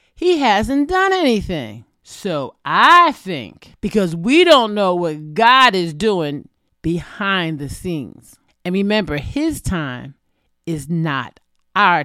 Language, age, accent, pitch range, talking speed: English, 40-59, American, 165-240 Hz, 125 wpm